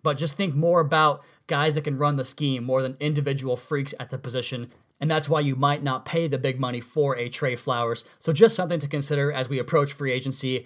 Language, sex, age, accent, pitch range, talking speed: English, male, 30-49, American, 135-160 Hz, 235 wpm